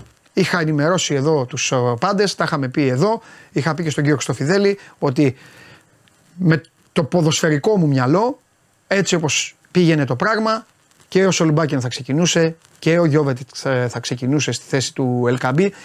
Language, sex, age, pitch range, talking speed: Greek, male, 30-49, 130-175 Hz, 155 wpm